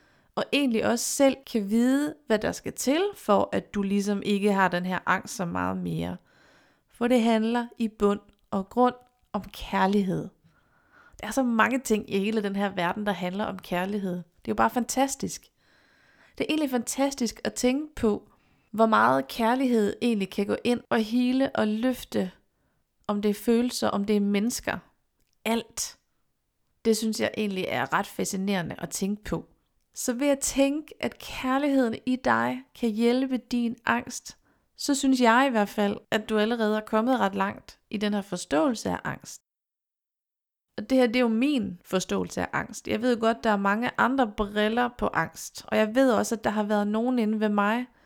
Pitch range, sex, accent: 205-245 Hz, female, native